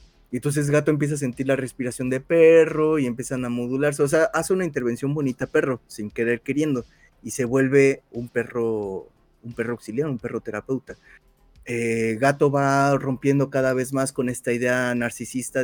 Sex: male